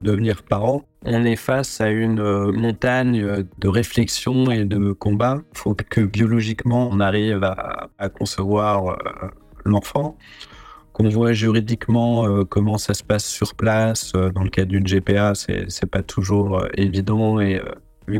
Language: French